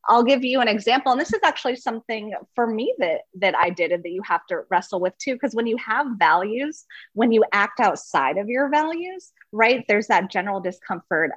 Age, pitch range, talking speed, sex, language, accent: 30-49, 175-240 Hz, 215 wpm, female, English, American